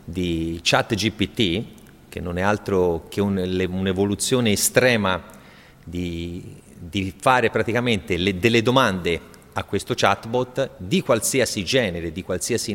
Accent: native